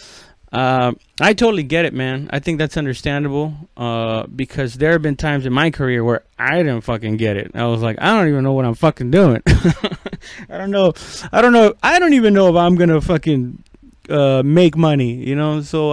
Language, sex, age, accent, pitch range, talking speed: English, male, 30-49, American, 120-170 Hz, 210 wpm